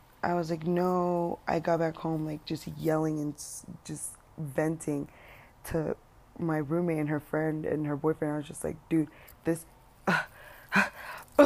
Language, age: English, 20-39